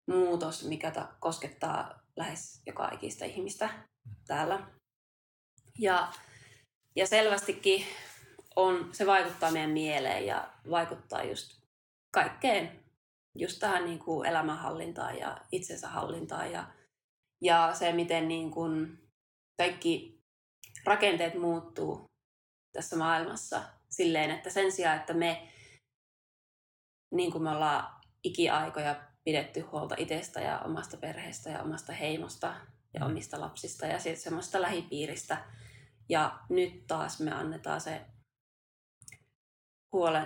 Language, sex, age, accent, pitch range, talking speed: Finnish, female, 20-39, native, 145-175 Hz, 110 wpm